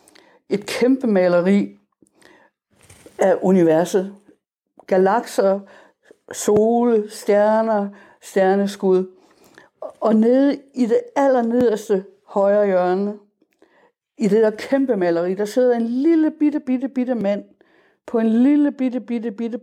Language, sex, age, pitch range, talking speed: Danish, female, 60-79, 185-235 Hz, 105 wpm